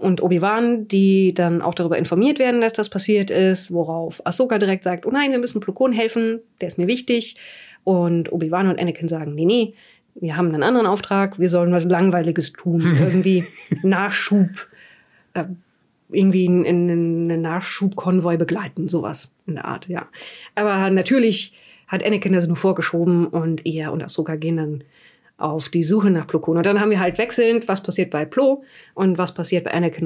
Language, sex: German, female